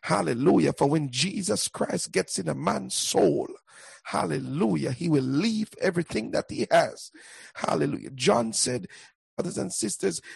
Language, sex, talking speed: English, male, 140 wpm